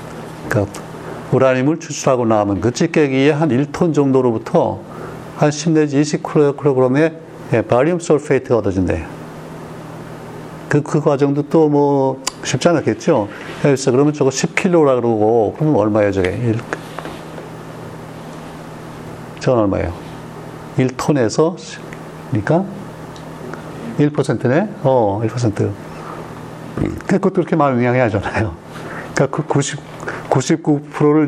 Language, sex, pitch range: Korean, male, 115-150 Hz